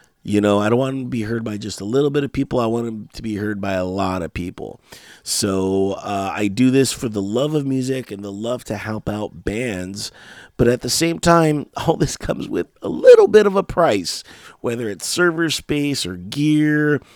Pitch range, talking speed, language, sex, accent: 95-120 Hz, 225 wpm, English, male, American